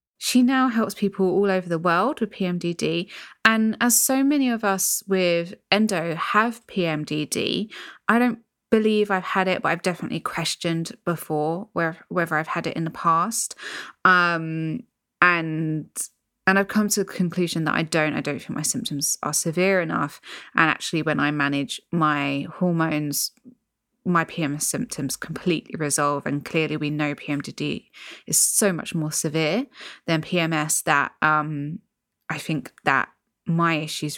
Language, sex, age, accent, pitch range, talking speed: English, female, 20-39, British, 155-195 Hz, 155 wpm